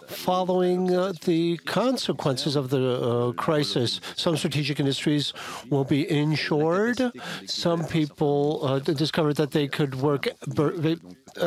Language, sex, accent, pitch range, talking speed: English, male, American, 145-185 Hz, 130 wpm